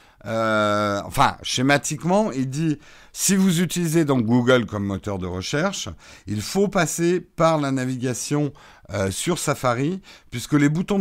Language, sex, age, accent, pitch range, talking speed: French, male, 50-69, French, 120-175 Hz, 140 wpm